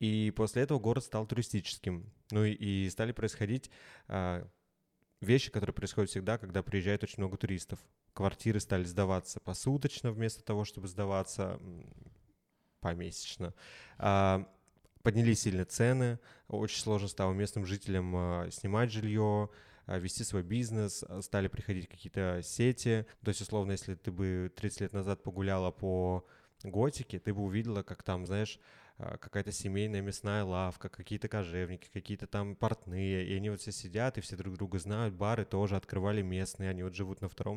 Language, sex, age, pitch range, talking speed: Russian, male, 20-39, 95-115 Hz, 145 wpm